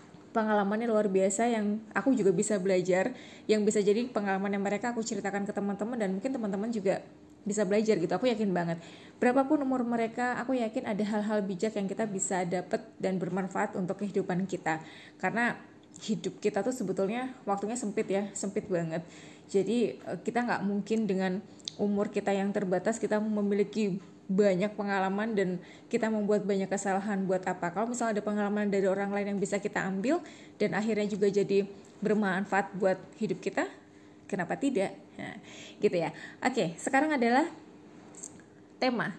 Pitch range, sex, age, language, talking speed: 195-230 Hz, female, 20-39, Indonesian, 160 wpm